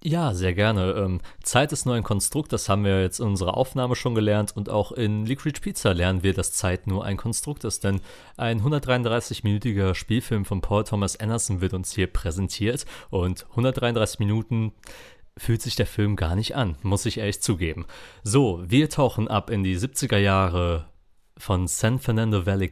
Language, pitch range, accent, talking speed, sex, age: German, 95-115 Hz, German, 180 wpm, male, 30-49